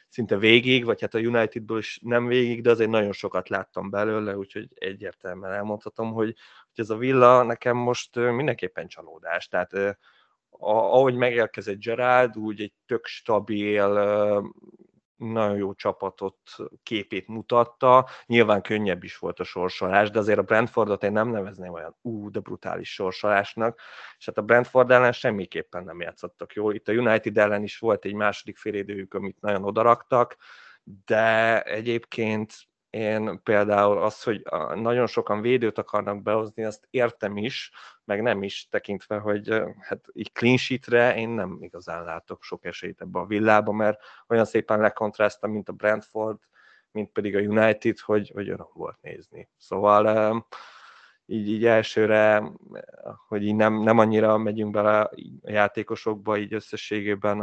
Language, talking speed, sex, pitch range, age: Hungarian, 145 wpm, male, 105-115 Hz, 30-49